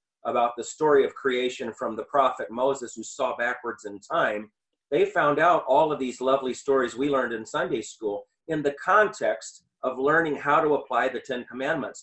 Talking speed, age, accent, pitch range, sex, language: 190 wpm, 40-59, American, 130-180 Hz, male, English